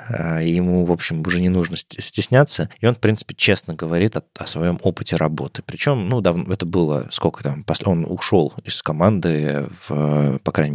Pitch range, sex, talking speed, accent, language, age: 80-100 Hz, male, 185 wpm, native, Russian, 20-39